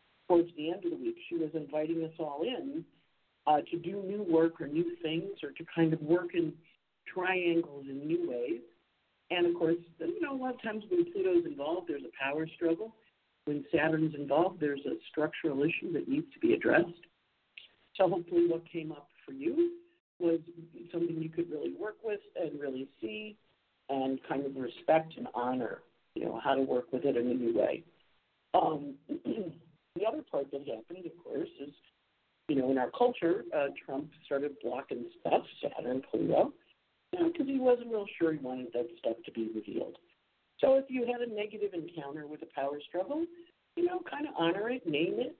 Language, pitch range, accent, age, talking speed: English, 150-240 Hz, American, 50-69, 190 wpm